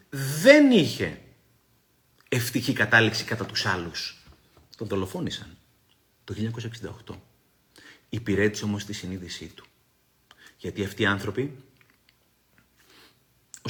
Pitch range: 95-115 Hz